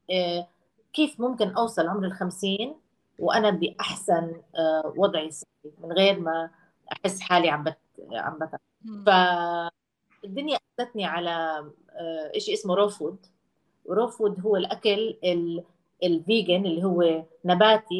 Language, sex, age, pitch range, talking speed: Arabic, female, 30-49, 165-210 Hz, 95 wpm